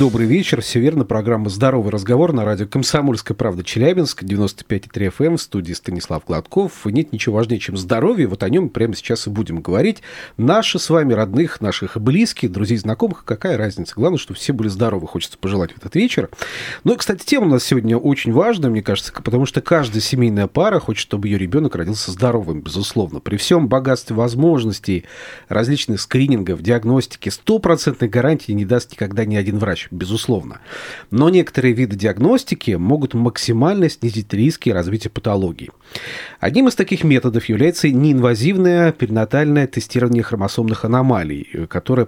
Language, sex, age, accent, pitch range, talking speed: Russian, male, 40-59, native, 105-145 Hz, 160 wpm